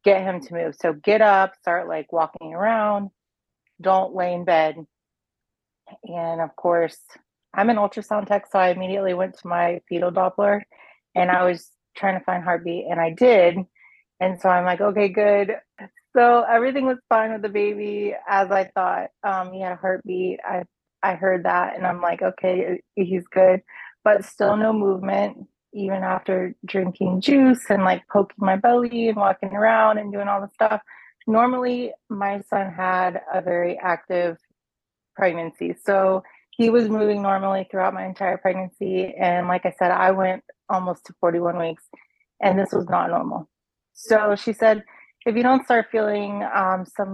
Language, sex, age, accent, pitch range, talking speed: English, female, 30-49, American, 185-210 Hz, 170 wpm